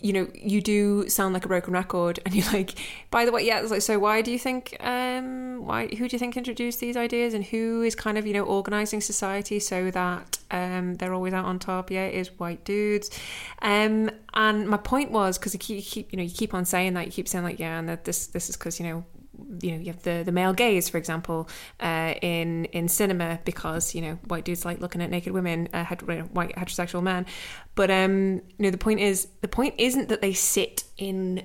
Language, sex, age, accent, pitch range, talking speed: English, female, 20-39, British, 175-215 Hz, 240 wpm